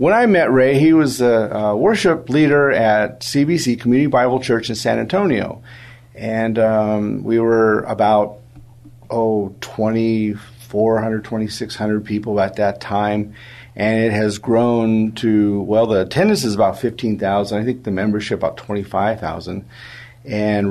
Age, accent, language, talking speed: 50-69, American, English, 140 wpm